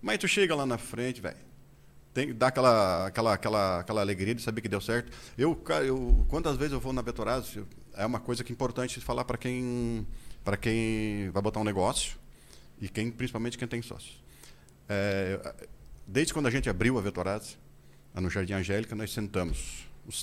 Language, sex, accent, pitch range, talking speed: Portuguese, male, Brazilian, 95-120 Hz, 180 wpm